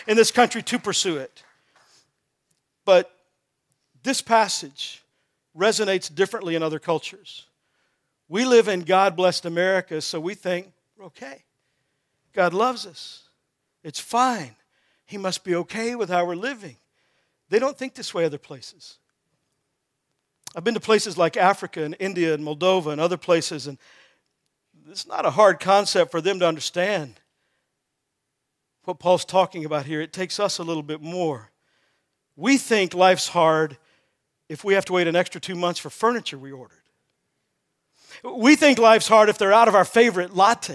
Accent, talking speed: American, 155 wpm